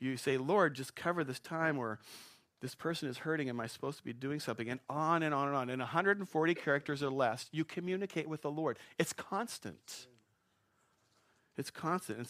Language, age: English, 40-59